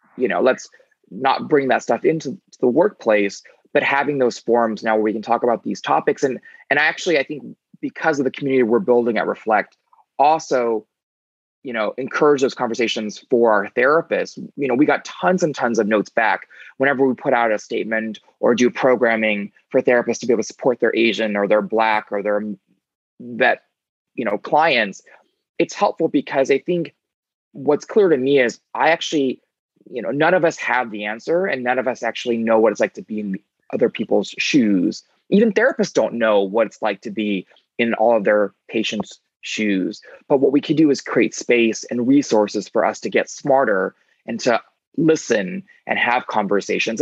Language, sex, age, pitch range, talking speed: English, male, 20-39, 110-145 Hz, 195 wpm